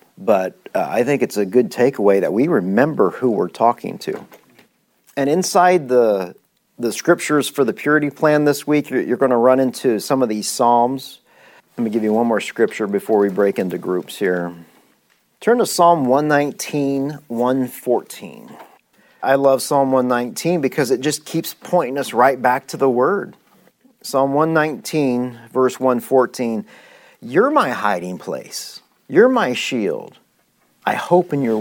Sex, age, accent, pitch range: male, 40-59, American, 130-175 Hz